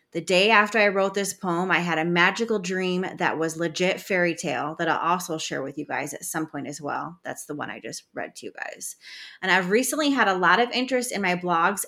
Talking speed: 250 wpm